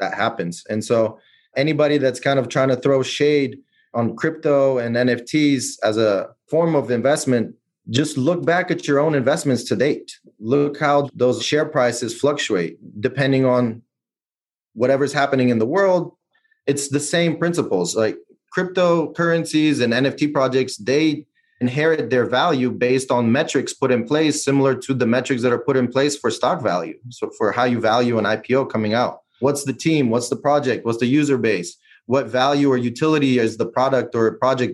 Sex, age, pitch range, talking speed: male, 30-49, 120-145 Hz, 175 wpm